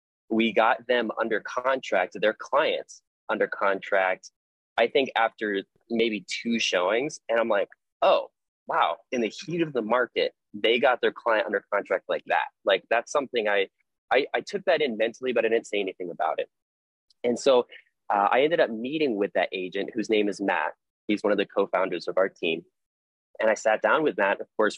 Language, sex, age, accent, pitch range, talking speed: English, male, 20-39, American, 105-130 Hz, 195 wpm